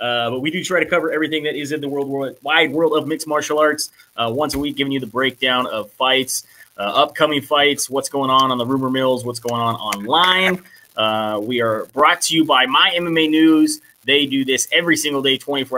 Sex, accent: male, American